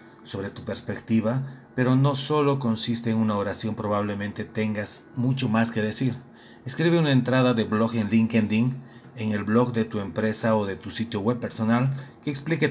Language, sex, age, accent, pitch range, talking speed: Spanish, male, 40-59, Mexican, 110-125 Hz, 175 wpm